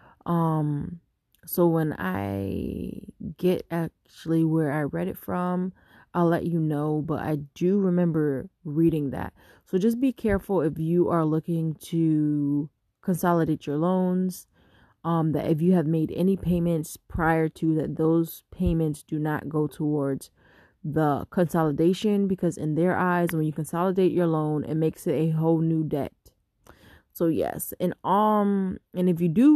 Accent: American